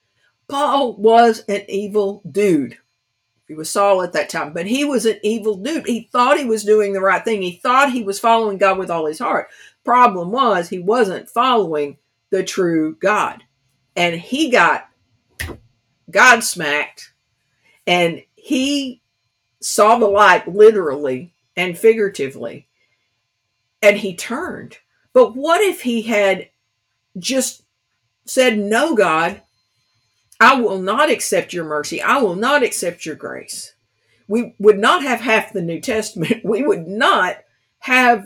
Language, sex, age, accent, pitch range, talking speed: English, female, 50-69, American, 170-235 Hz, 145 wpm